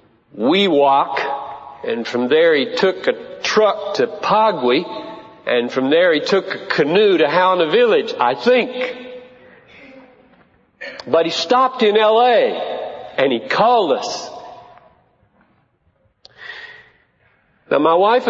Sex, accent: male, American